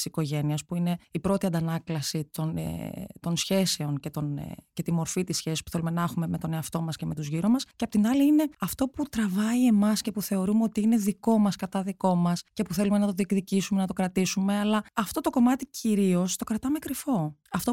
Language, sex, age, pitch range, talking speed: Greek, female, 20-39, 165-230 Hz, 215 wpm